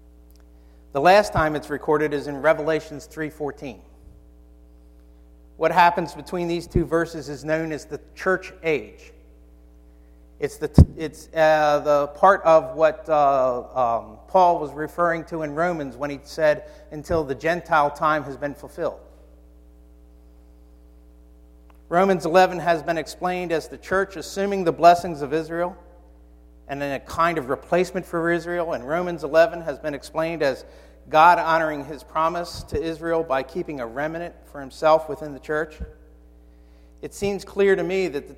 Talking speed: 150 wpm